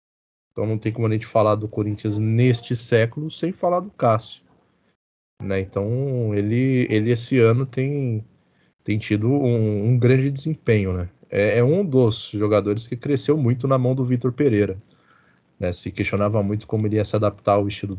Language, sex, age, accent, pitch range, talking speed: Portuguese, male, 20-39, Brazilian, 110-155 Hz, 175 wpm